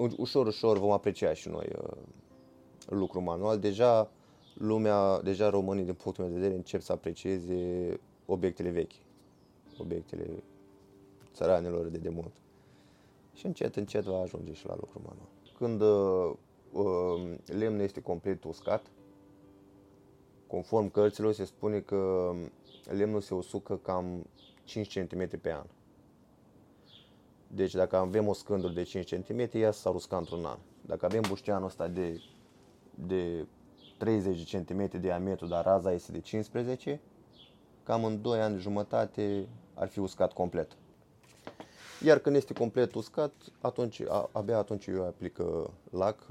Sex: male